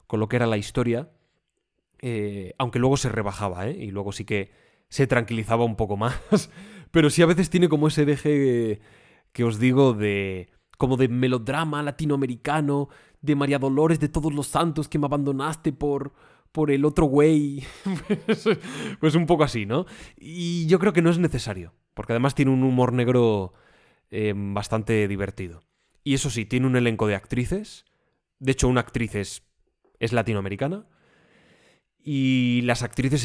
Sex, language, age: male, Spanish, 20-39